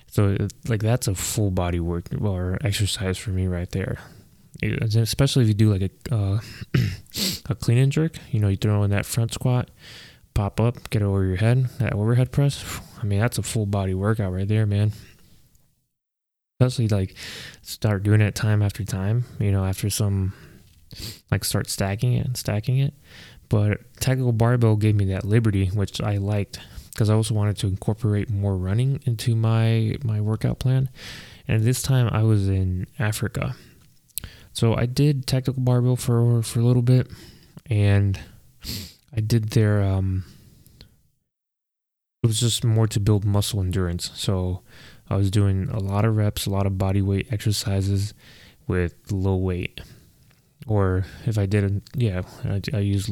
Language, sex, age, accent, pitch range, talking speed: English, male, 20-39, American, 100-120 Hz, 170 wpm